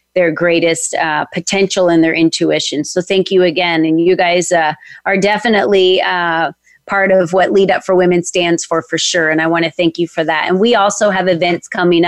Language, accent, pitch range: English, American, 170-200 Hz